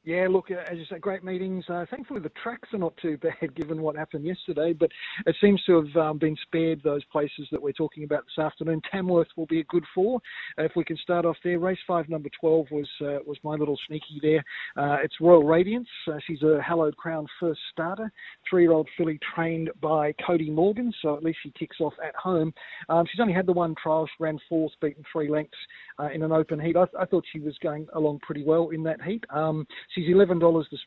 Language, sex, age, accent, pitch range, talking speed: English, male, 40-59, Australian, 150-170 Hz, 230 wpm